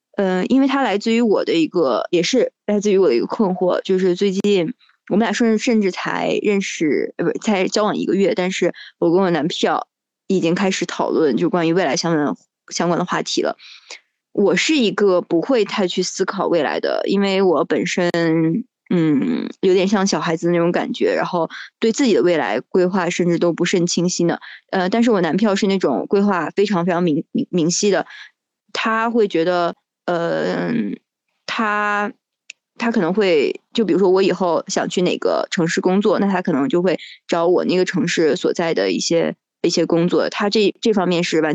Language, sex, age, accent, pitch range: Chinese, female, 20-39, native, 175-215 Hz